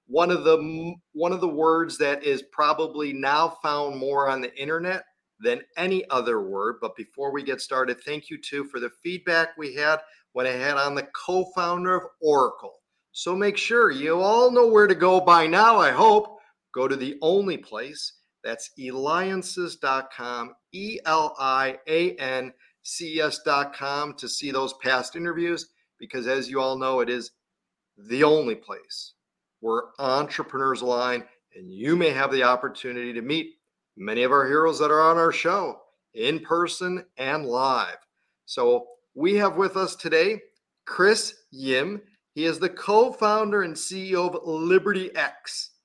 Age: 40-59